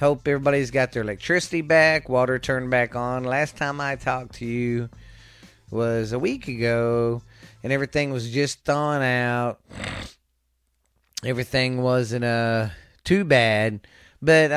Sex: male